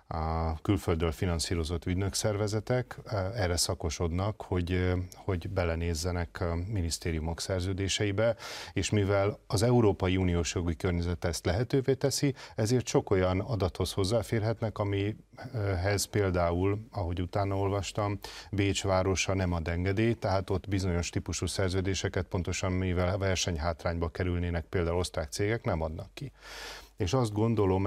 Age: 40-59